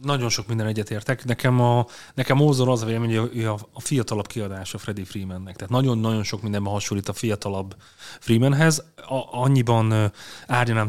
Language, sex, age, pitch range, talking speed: Hungarian, male, 30-49, 105-125 Hz, 165 wpm